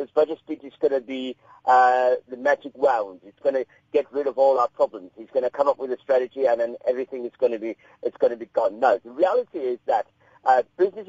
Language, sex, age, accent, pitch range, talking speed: English, male, 40-59, British, 130-180 Hz, 250 wpm